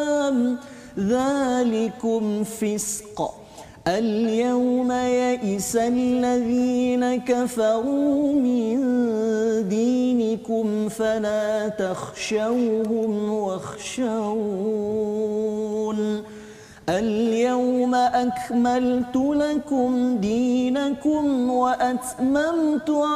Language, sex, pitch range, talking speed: Malayalam, male, 215-250 Hz, 40 wpm